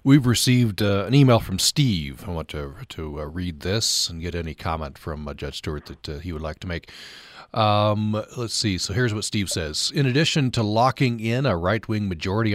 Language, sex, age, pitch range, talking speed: English, male, 40-59, 90-115 Hz, 215 wpm